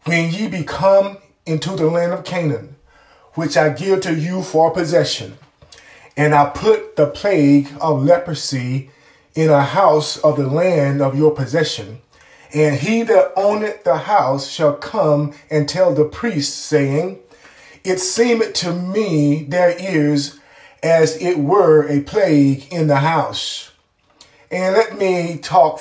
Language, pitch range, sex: English, 150-195 Hz, male